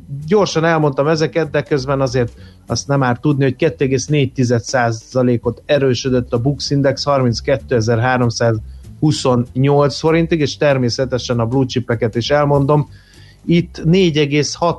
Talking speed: 105 wpm